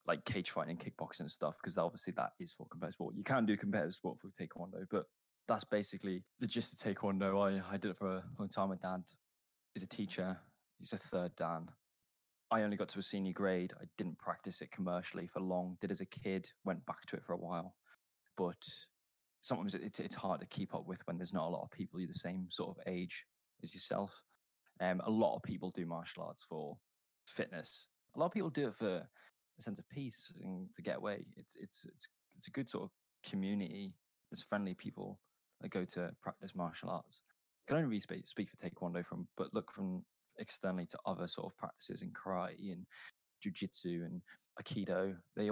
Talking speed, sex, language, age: 210 wpm, male, English, 20-39